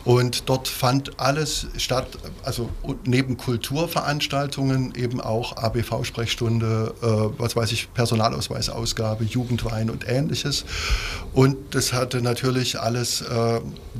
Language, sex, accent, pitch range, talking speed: German, male, German, 110-130 Hz, 105 wpm